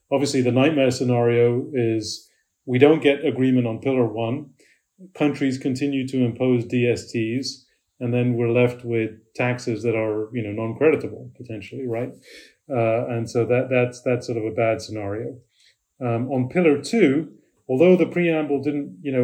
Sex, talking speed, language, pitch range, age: male, 160 wpm, English, 115-130 Hz, 30-49